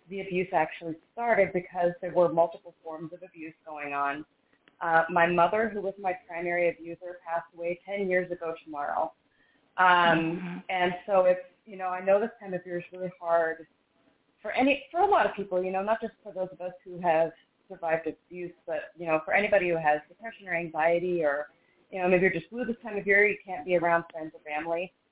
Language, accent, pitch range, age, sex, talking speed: English, American, 165-190 Hz, 30-49, female, 215 wpm